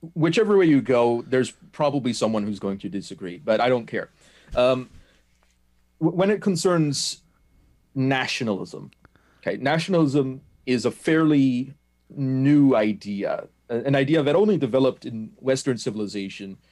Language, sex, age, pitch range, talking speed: English, male, 30-49, 105-140 Hz, 125 wpm